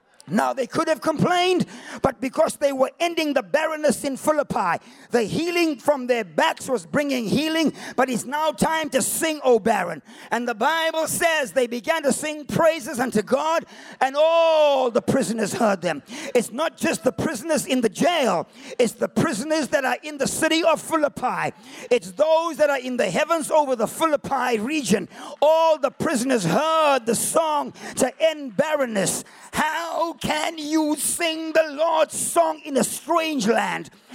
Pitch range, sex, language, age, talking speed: 250-320 Hz, male, English, 50-69, 170 wpm